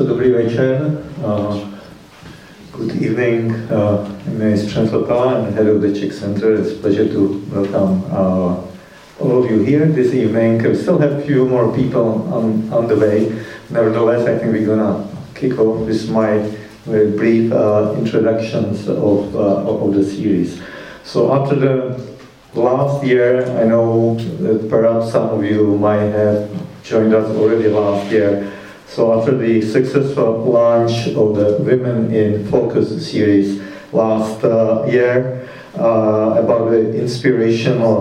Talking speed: 150 wpm